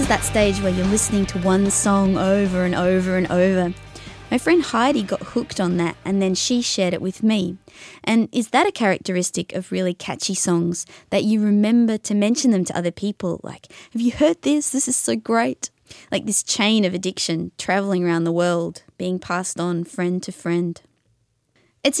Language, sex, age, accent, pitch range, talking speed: English, female, 20-39, Australian, 180-220 Hz, 190 wpm